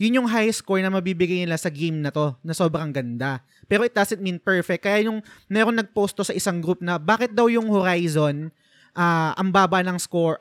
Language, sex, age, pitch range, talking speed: Filipino, male, 20-39, 160-210 Hz, 210 wpm